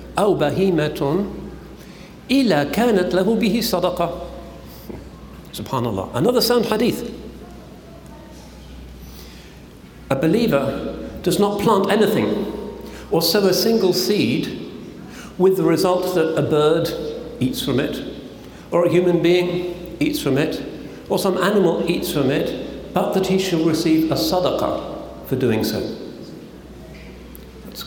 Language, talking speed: English, 115 wpm